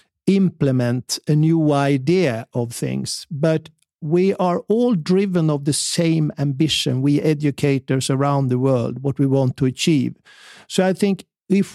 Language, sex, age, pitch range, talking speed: Dutch, male, 50-69, 140-180 Hz, 150 wpm